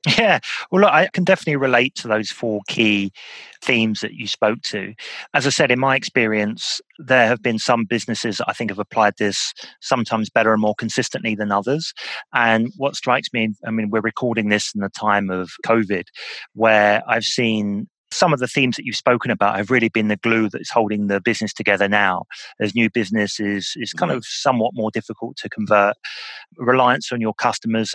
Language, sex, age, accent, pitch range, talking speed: English, male, 30-49, British, 105-120 Hz, 195 wpm